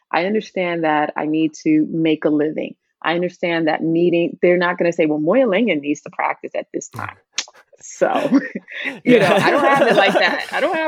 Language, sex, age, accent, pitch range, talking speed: English, female, 30-49, American, 160-190 Hz, 210 wpm